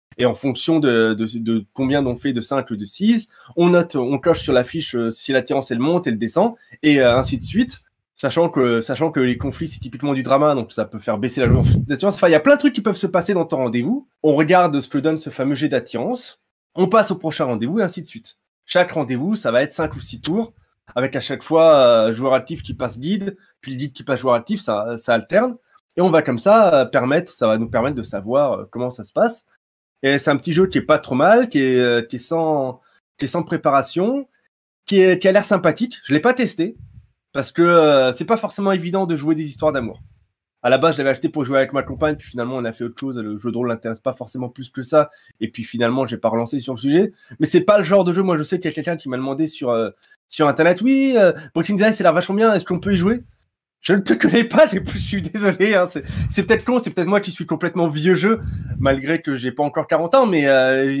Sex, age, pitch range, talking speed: male, 20-39, 130-190 Hz, 270 wpm